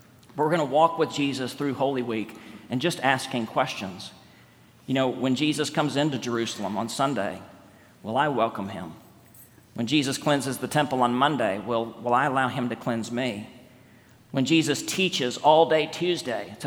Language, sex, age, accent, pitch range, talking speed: English, male, 40-59, American, 110-145 Hz, 175 wpm